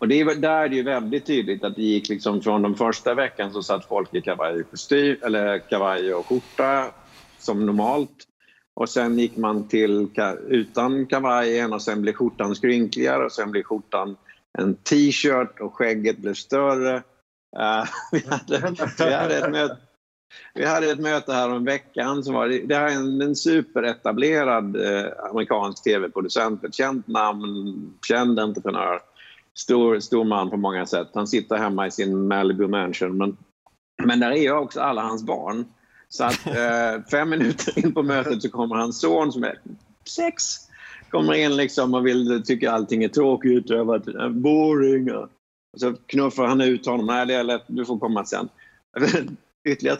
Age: 50-69